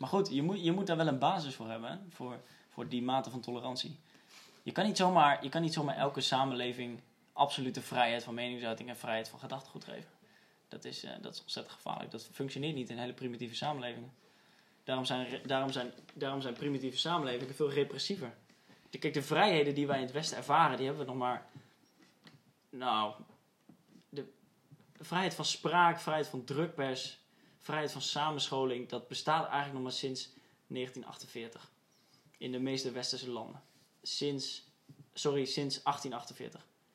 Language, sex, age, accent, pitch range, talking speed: Dutch, male, 10-29, Dutch, 125-150 Hz, 170 wpm